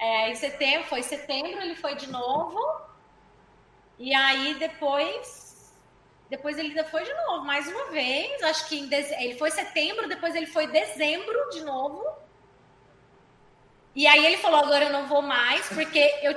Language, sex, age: Portuguese, female, 20-39